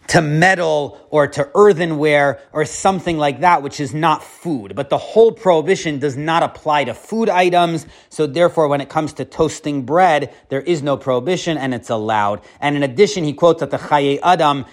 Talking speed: 190 wpm